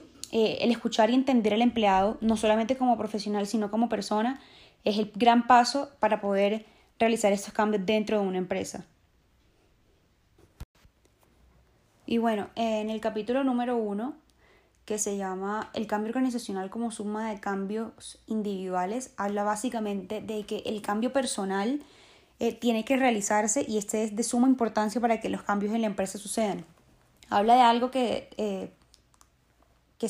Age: 10-29